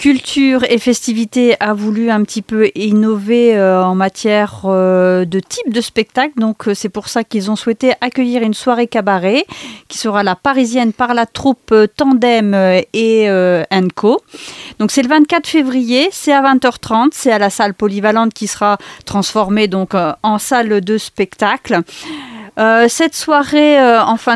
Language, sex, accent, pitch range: French, female, French, 210-265 Hz